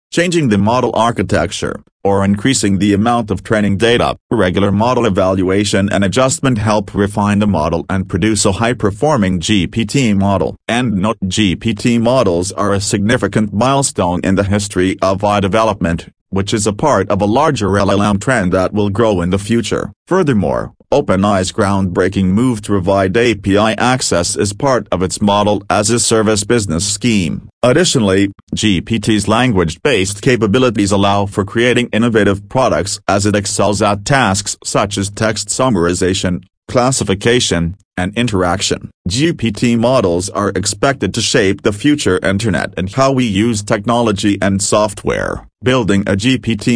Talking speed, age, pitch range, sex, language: 140 wpm, 40-59, 95-115 Hz, male, English